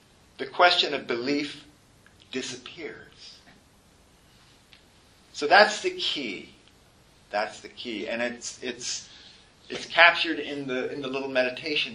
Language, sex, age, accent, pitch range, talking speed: English, male, 50-69, American, 110-145 Hz, 105 wpm